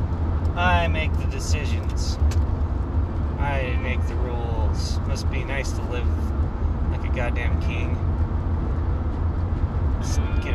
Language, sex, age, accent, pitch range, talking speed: English, male, 30-49, American, 80-85 Hz, 110 wpm